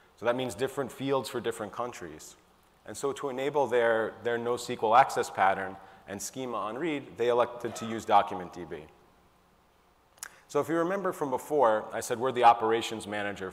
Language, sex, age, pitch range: English, male, 30-49, 110-145 Hz